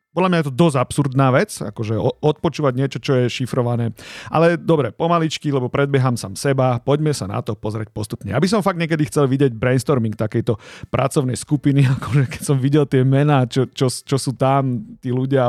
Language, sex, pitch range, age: Slovak, male, 125-155 Hz, 40-59